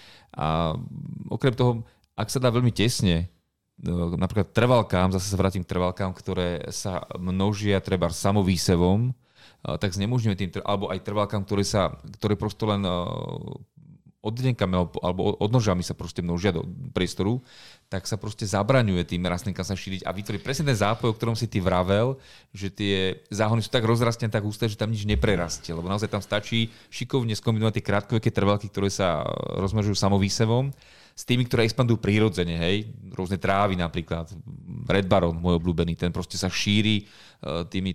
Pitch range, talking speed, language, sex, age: 90-115 Hz, 155 wpm, Slovak, male, 30-49